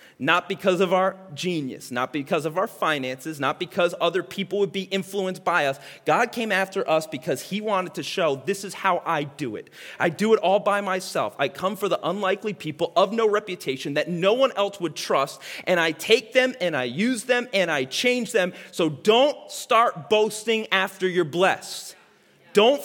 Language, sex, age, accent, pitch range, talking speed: English, male, 30-49, American, 160-230 Hz, 195 wpm